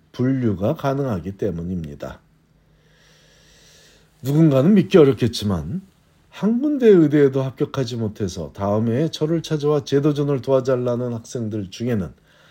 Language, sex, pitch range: Korean, male, 105-155 Hz